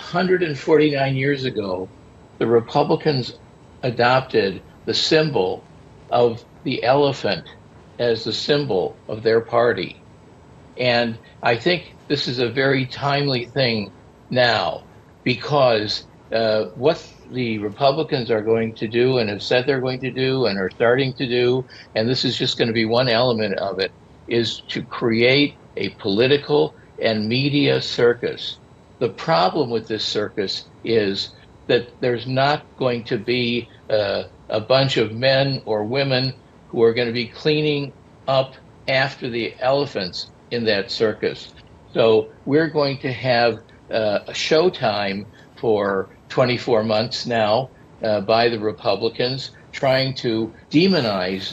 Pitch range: 110-135 Hz